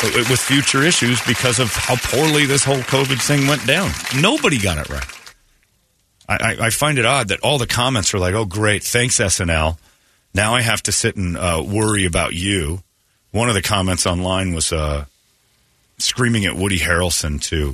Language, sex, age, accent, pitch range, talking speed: English, male, 40-59, American, 90-115 Hz, 185 wpm